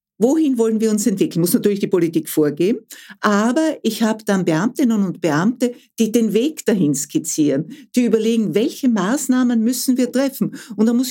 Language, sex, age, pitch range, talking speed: German, female, 60-79, 195-250 Hz, 175 wpm